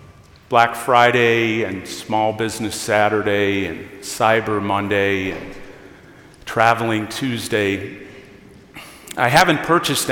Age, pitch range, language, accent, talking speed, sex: 50-69, 105-145 Hz, English, American, 90 wpm, male